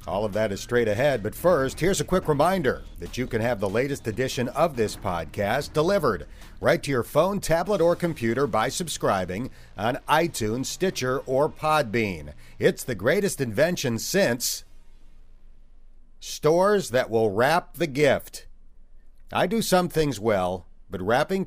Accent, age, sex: American, 50-69, male